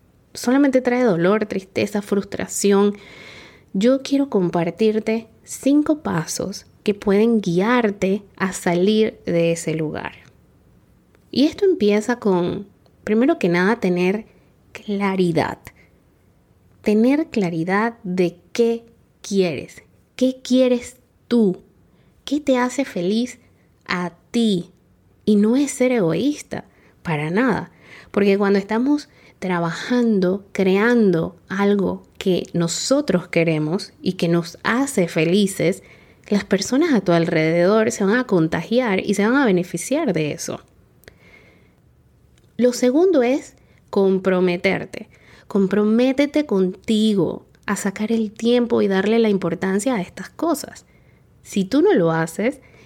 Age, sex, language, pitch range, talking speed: 20-39, female, Spanish, 180-240 Hz, 115 wpm